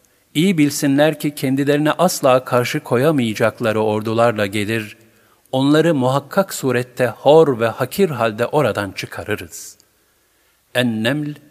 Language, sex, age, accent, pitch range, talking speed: Turkish, male, 50-69, native, 105-145 Hz, 100 wpm